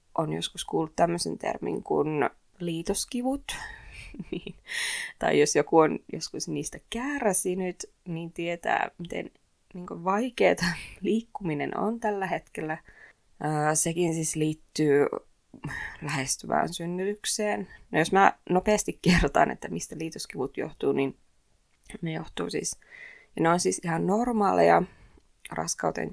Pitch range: 160-220 Hz